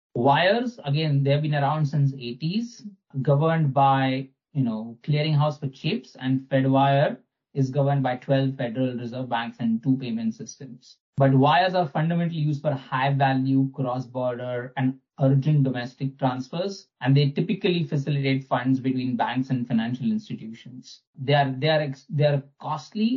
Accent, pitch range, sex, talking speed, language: Indian, 130-145 Hz, male, 150 wpm, English